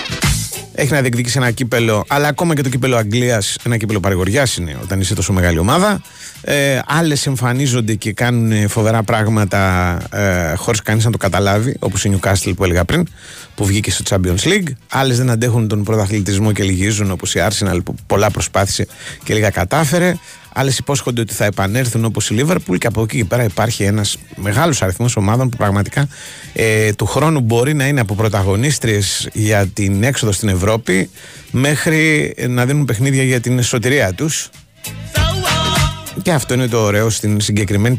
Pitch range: 105-135 Hz